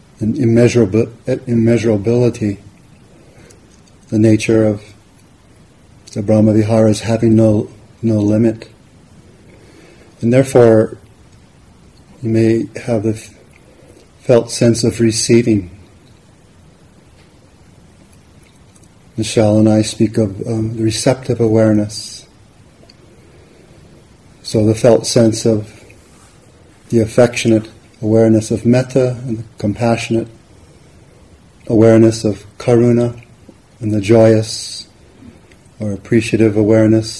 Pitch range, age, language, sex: 110-120 Hz, 40-59, English, male